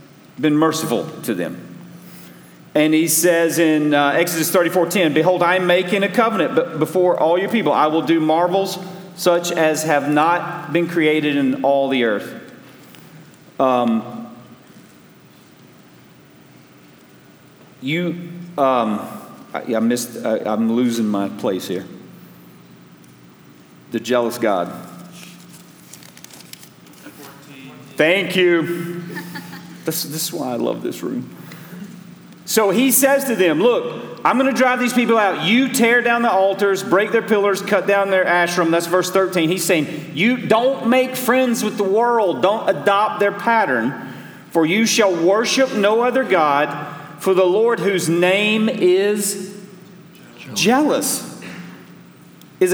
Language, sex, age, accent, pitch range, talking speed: English, male, 40-59, American, 155-205 Hz, 135 wpm